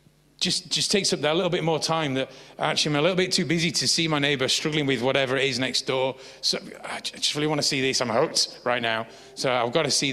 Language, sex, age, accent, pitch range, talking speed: English, male, 30-49, British, 135-195 Hz, 265 wpm